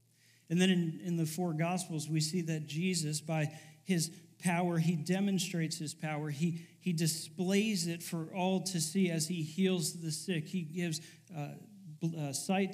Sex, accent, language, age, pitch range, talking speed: male, American, English, 40-59, 150-180 Hz, 175 wpm